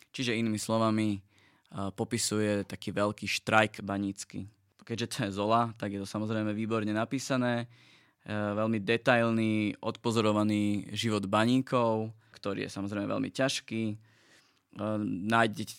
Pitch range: 105-115 Hz